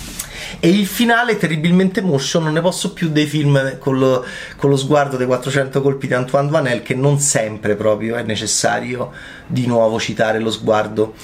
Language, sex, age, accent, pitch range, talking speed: Italian, male, 30-49, native, 125-180 Hz, 180 wpm